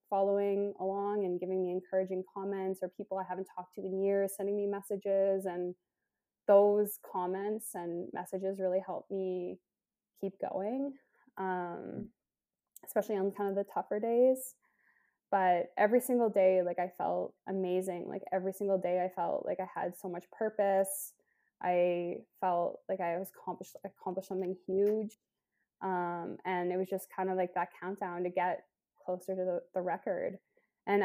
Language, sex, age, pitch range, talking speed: English, female, 20-39, 185-205 Hz, 160 wpm